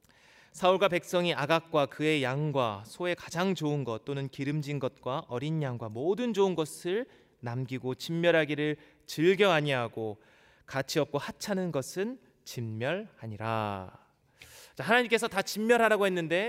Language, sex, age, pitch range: Korean, male, 30-49, 120-175 Hz